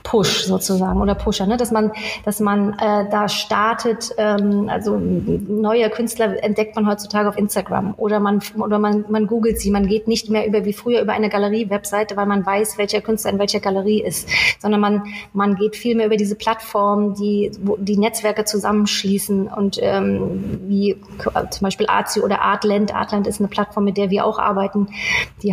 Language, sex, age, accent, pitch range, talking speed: German, female, 30-49, German, 200-220 Hz, 185 wpm